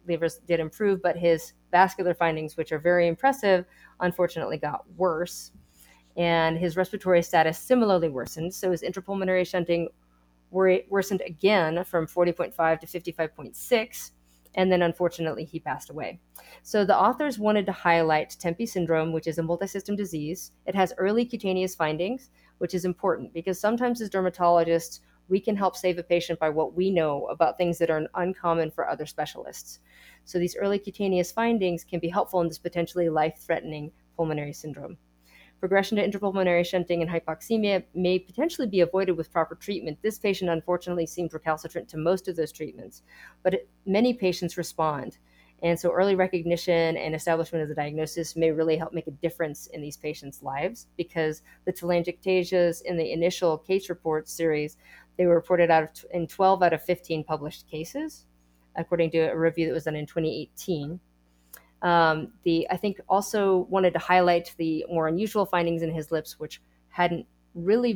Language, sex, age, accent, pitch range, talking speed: English, female, 30-49, American, 160-185 Hz, 165 wpm